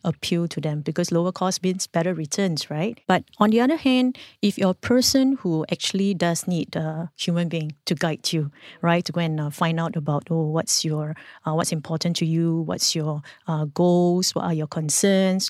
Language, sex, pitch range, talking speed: English, female, 165-190 Hz, 205 wpm